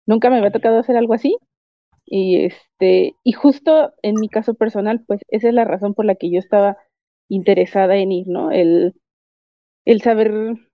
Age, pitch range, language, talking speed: 30-49, 195-245 Hz, Spanish, 180 wpm